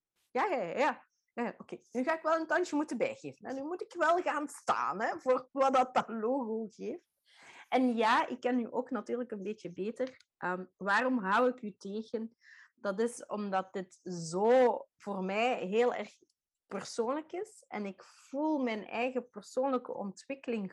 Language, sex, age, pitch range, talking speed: Dutch, female, 30-49, 185-250 Hz, 175 wpm